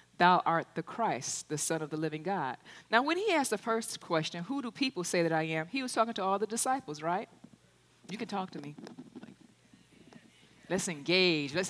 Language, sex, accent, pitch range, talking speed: English, female, American, 160-245 Hz, 205 wpm